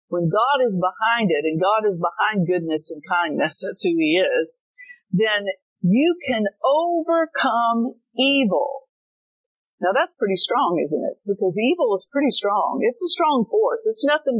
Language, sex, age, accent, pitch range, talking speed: English, female, 50-69, American, 185-280 Hz, 160 wpm